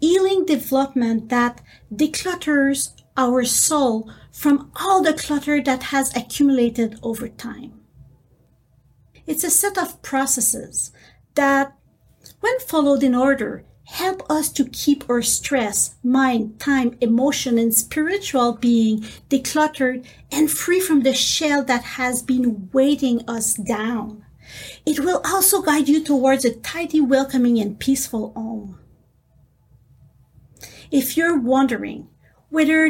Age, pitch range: 40-59, 230-300 Hz